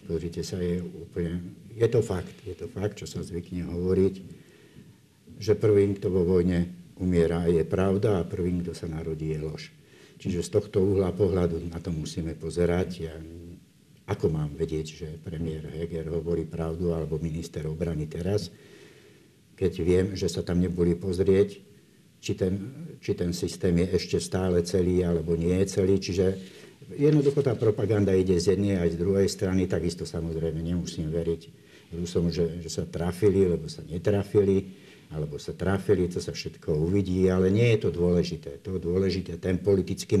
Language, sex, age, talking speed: Slovak, male, 60-79, 165 wpm